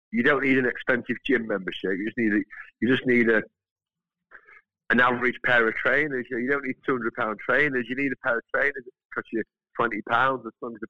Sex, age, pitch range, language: male, 50-69, 110-140 Hz, Finnish